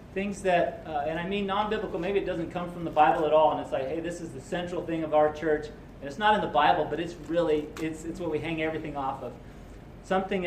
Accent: American